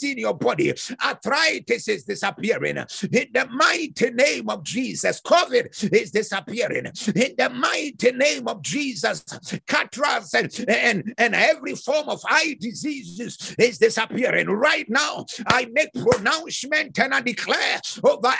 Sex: male